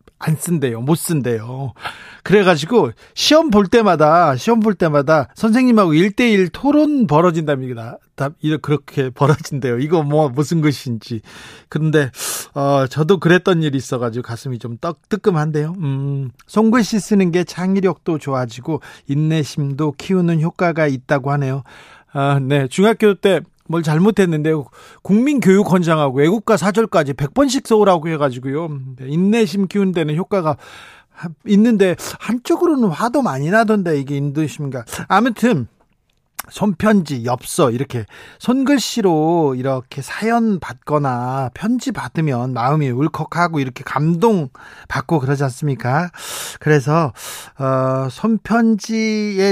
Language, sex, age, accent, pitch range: Korean, male, 40-59, native, 140-200 Hz